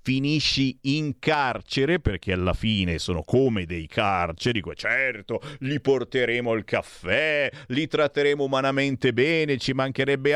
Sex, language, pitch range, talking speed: male, Italian, 100-140 Hz, 120 wpm